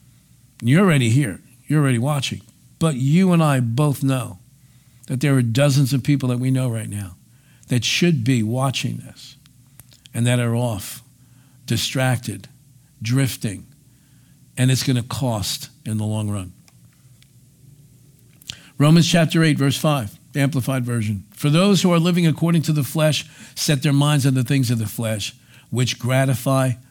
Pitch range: 120-145 Hz